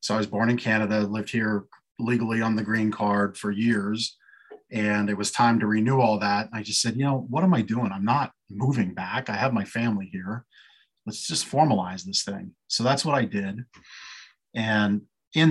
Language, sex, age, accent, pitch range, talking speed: English, male, 40-59, American, 100-120 Hz, 205 wpm